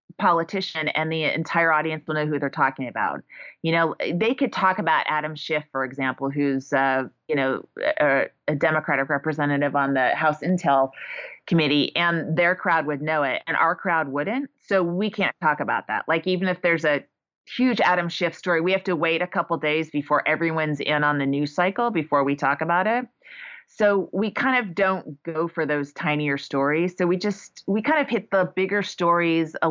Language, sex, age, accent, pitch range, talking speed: English, female, 30-49, American, 145-175 Hz, 200 wpm